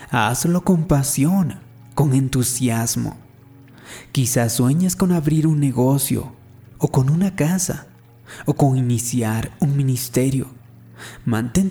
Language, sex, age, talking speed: Spanish, male, 30-49, 110 wpm